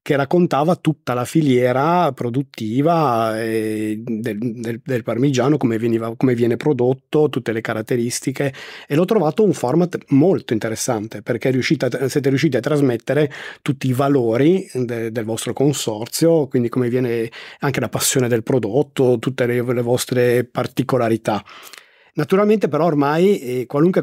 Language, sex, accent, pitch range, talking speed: Italian, male, native, 125-155 Hz, 140 wpm